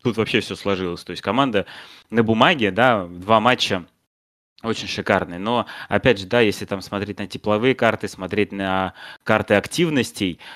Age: 20-39